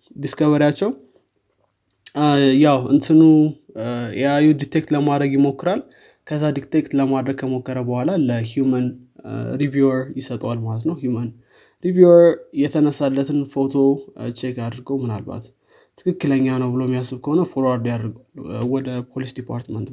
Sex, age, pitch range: male, 20-39, 125-145 Hz